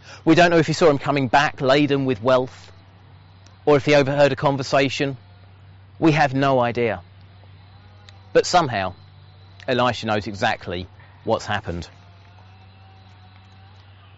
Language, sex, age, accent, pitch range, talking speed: English, male, 30-49, British, 95-135 Hz, 125 wpm